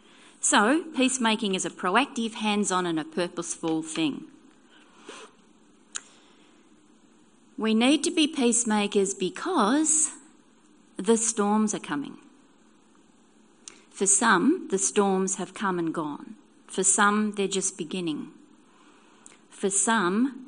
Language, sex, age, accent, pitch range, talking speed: English, female, 40-59, Australian, 180-265 Hz, 105 wpm